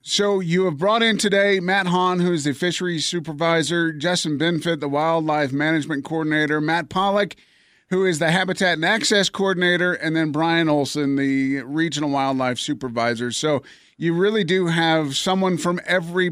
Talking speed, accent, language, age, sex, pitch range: 160 wpm, American, English, 30-49, male, 145-175 Hz